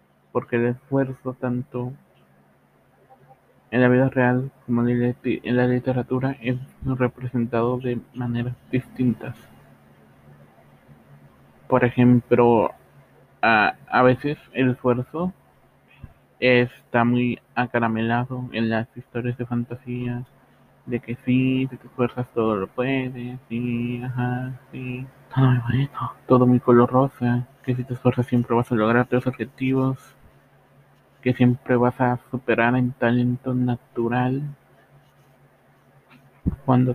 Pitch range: 120-130 Hz